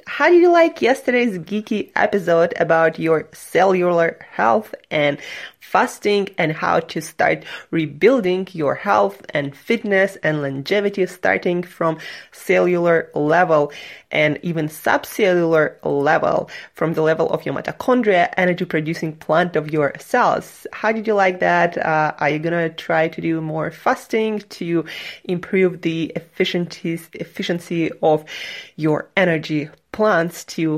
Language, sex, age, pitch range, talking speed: English, female, 20-39, 160-220 Hz, 130 wpm